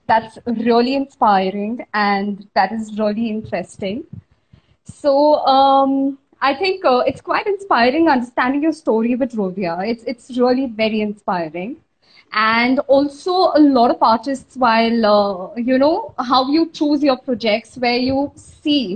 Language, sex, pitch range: English, female, 225-290 Hz